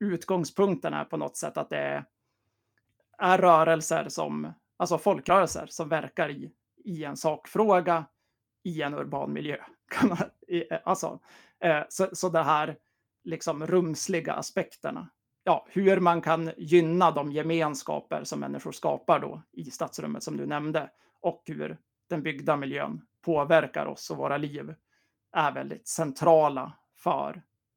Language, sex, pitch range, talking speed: Swedish, male, 130-175 Hz, 130 wpm